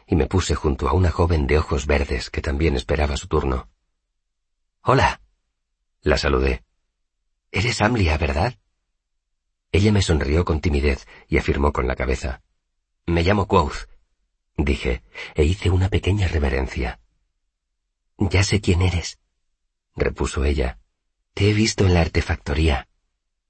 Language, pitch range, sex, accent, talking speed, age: Spanish, 70-95 Hz, male, Spanish, 135 wpm, 40-59